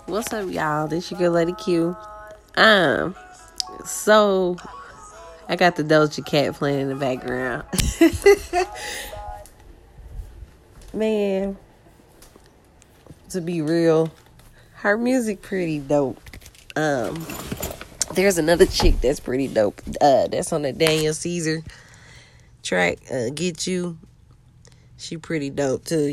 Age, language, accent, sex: 20-39, English, American, female